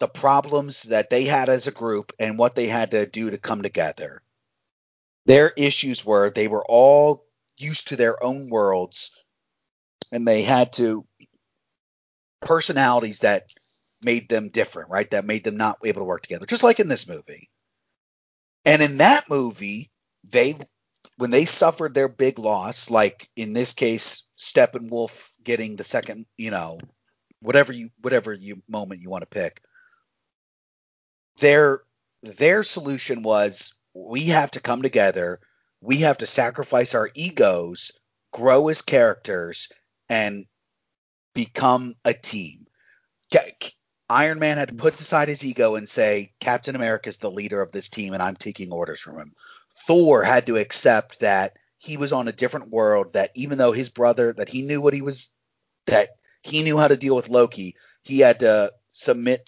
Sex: male